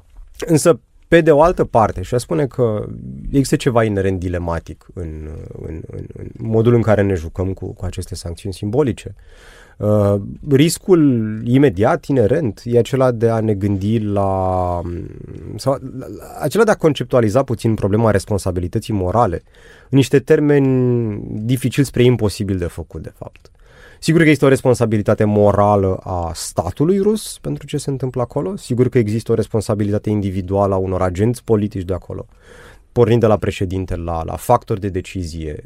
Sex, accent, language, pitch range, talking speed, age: male, native, Romanian, 95-130 Hz, 160 wpm, 30-49